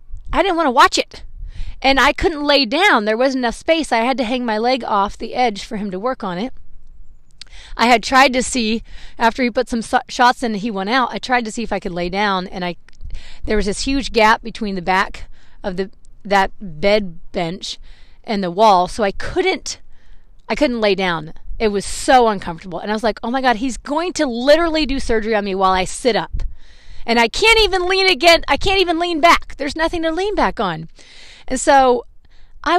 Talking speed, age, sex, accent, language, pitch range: 225 wpm, 30-49, female, American, English, 205-310 Hz